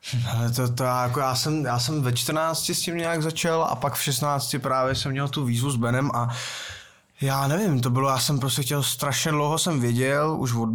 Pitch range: 120-140 Hz